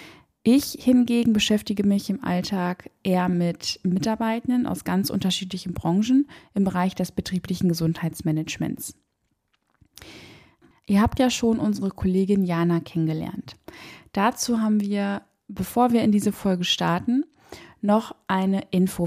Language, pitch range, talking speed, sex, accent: German, 180-220 Hz, 120 wpm, female, German